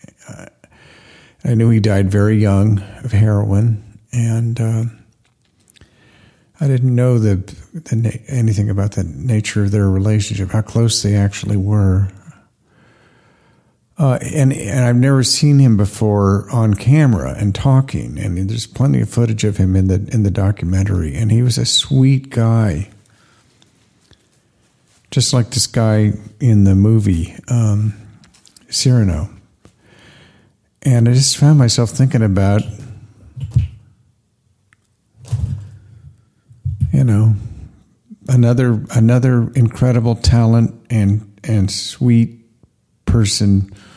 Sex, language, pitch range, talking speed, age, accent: male, English, 100-120 Hz, 115 wpm, 50-69, American